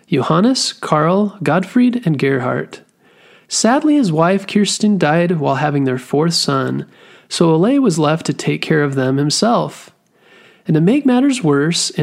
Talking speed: 155 wpm